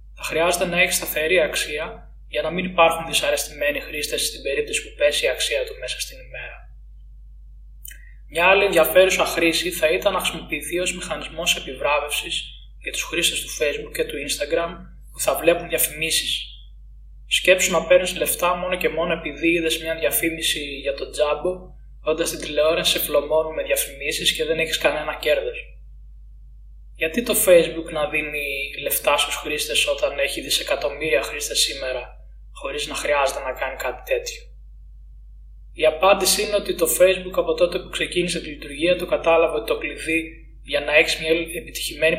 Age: 20-39